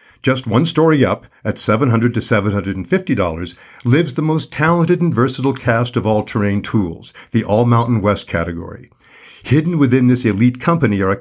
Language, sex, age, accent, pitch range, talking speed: English, male, 50-69, American, 100-135 Hz, 155 wpm